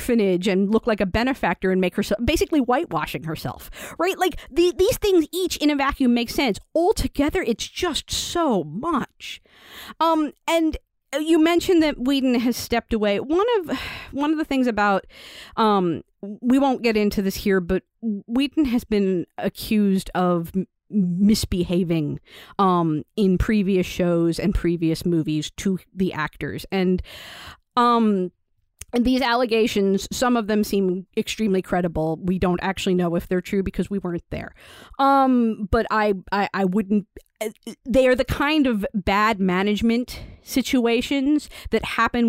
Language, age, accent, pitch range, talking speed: English, 40-59, American, 185-255 Hz, 150 wpm